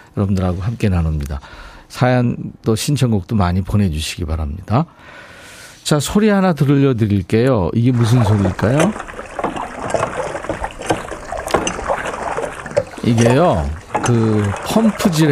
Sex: male